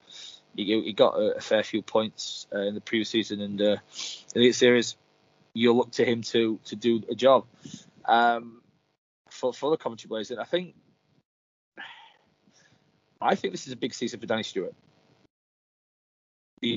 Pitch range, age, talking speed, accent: 110-145 Hz, 20-39, 170 wpm, British